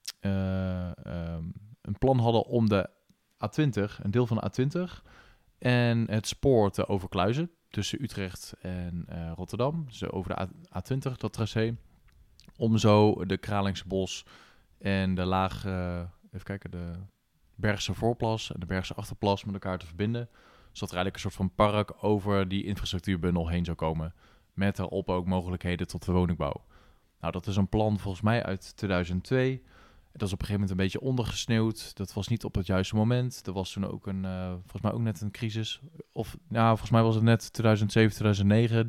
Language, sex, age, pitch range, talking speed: English, male, 20-39, 95-115 Hz, 180 wpm